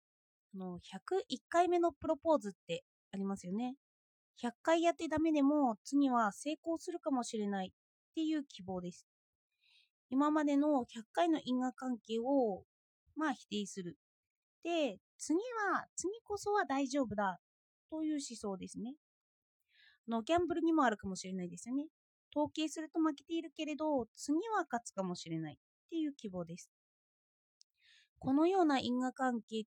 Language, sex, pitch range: Japanese, female, 220-315 Hz